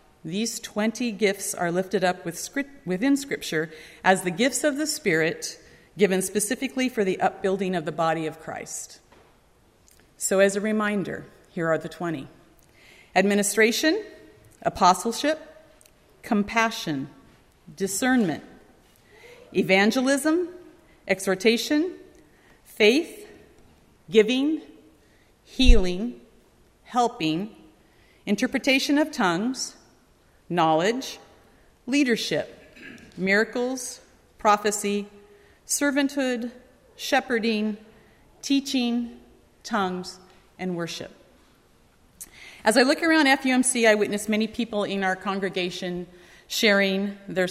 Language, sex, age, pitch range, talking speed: English, female, 40-59, 180-250 Hz, 85 wpm